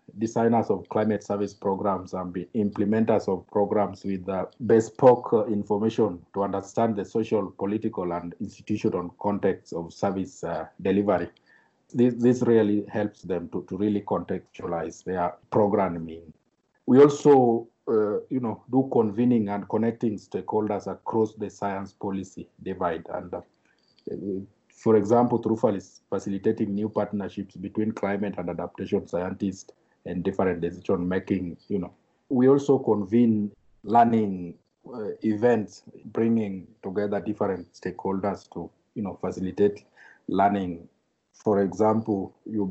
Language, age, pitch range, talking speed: English, 50-69, 95-110 Hz, 130 wpm